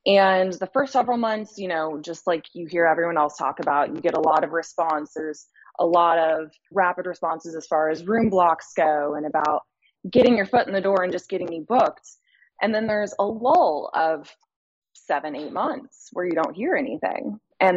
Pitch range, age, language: 160-215 Hz, 20-39, English